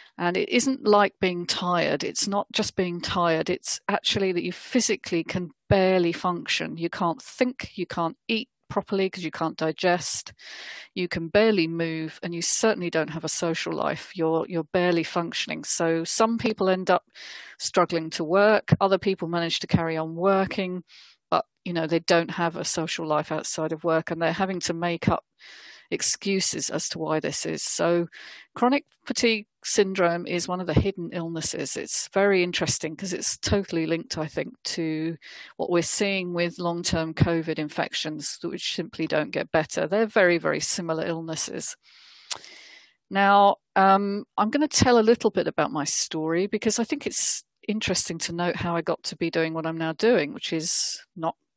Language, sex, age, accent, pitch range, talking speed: English, female, 40-59, British, 165-195 Hz, 180 wpm